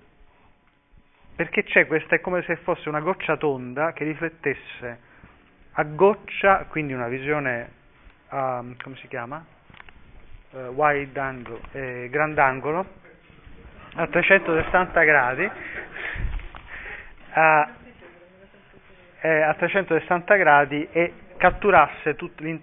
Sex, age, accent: male, 30-49, native